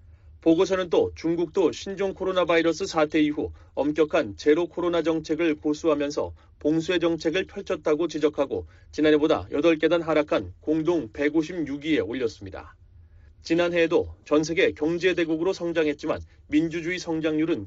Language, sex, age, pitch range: Korean, male, 30-49, 140-170 Hz